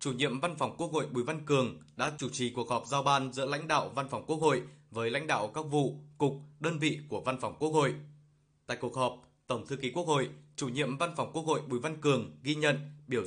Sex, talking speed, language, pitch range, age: male, 255 wpm, Vietnamese, 130-150 Hz, 20-39